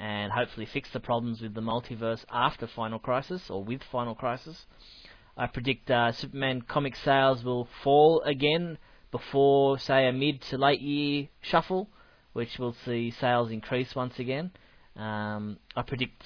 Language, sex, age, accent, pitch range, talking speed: English, male, 20-39, Australian, 115-135 Hz, 150 wpm